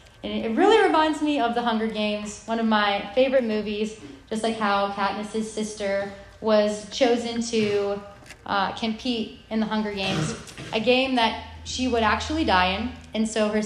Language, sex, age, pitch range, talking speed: English, female, 20-39, 205-240 Hz, 170 wpm